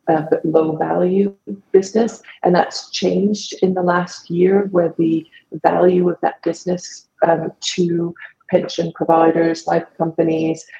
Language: English